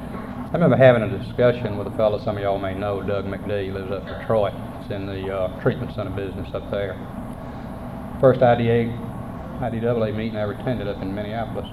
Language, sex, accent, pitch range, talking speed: English, male, American, 100-125 Hz, 200 wpm